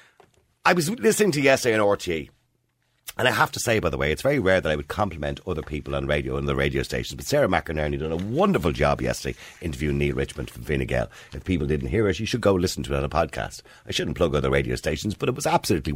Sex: male